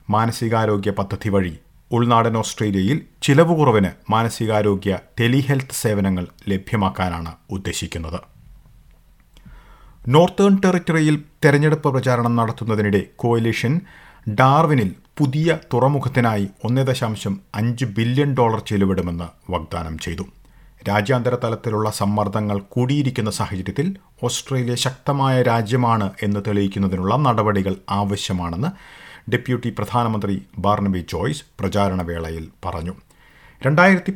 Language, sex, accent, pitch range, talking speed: Malayalam, male, native, 100-135 Hz, 80 wpm